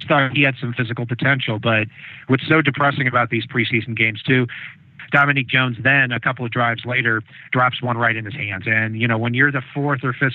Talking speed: 220 wpm